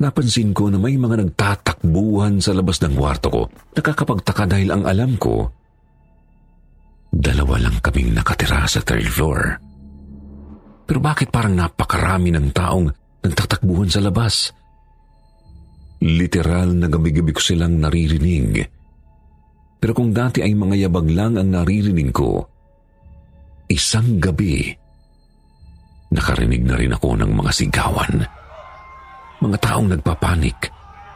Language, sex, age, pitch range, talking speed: Filipino, male, 50-69, 75-100 Hz, 115 wpm